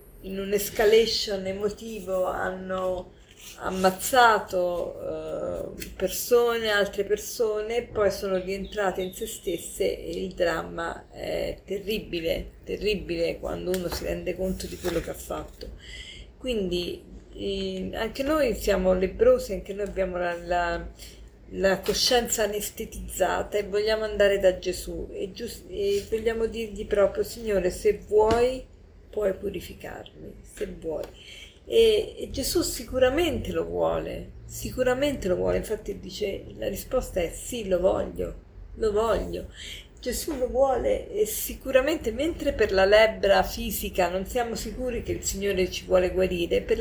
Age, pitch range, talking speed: 40-59, 185-245 Hz, 130 wpm